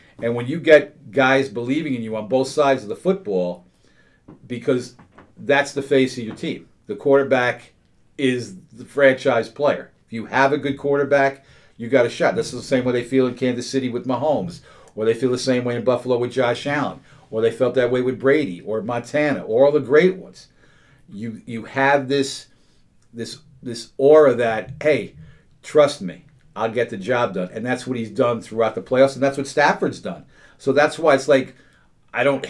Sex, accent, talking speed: male, American, 205 wpm